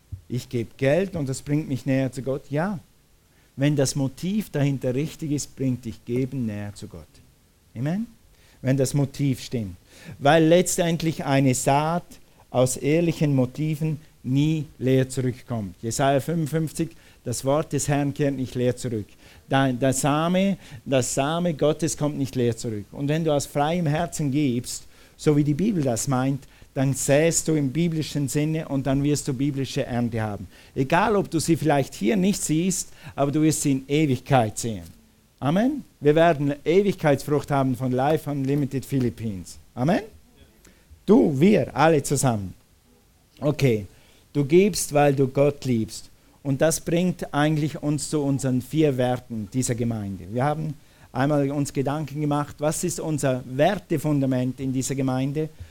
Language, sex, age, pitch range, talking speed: German, male, 50-69, 125-155 Hz, 155 wpm